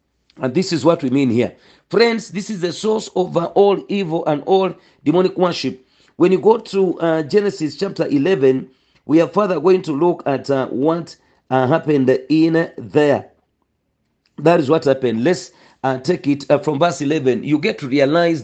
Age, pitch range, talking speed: 50-69, 130-170 Hz, 185 wpm